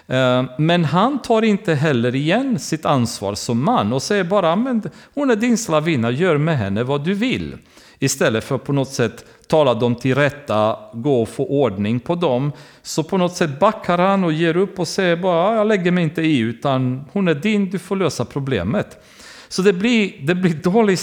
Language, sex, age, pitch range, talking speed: Swedish, male, 40-59, 115-175 Hz, 200 wpm